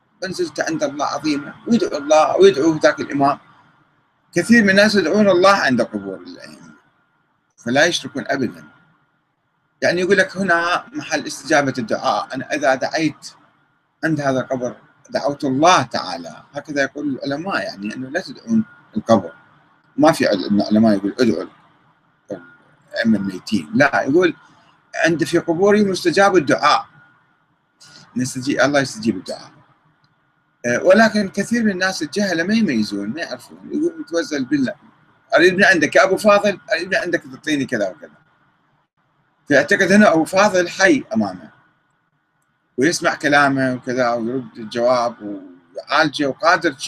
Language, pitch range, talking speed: Arabic, 130-205 Hz, 125 wpm